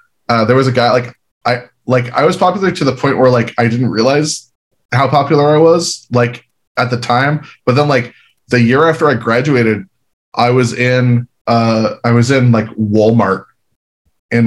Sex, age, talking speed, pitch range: male, 20-39, 185 wpm, 110-125 Hz